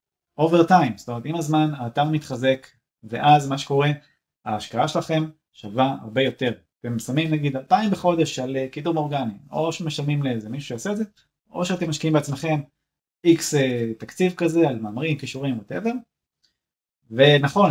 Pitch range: 120-160 Hz